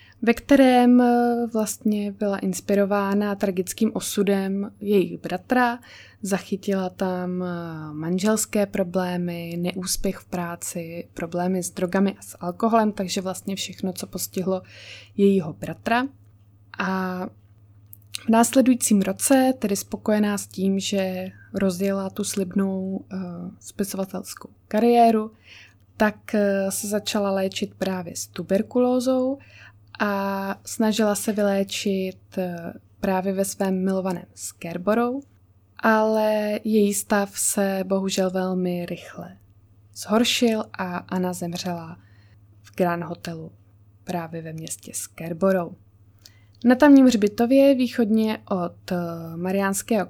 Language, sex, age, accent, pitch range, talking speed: Czech, female, 20-39, native, 175-210 Hz, 100 wpm